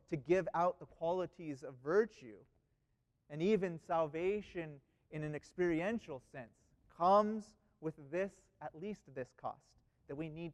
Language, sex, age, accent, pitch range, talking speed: English, male, 30-49, American, 140-175 Hz, 135 wpm